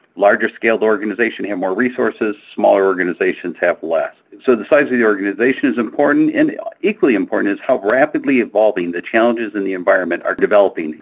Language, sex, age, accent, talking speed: English, male, 50-69, American, 170 wpm